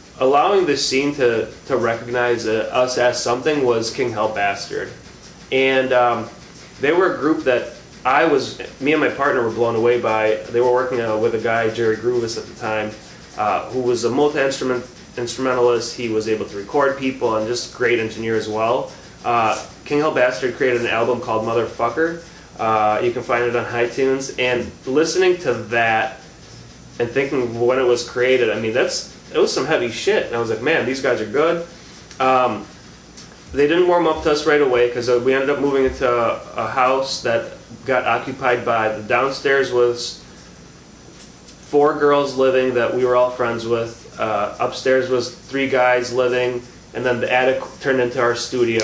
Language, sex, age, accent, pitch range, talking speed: English, male, 20-39, American, 115-130 Hz, 185 wpm